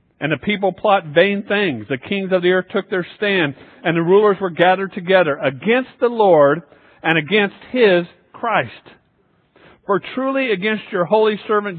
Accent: American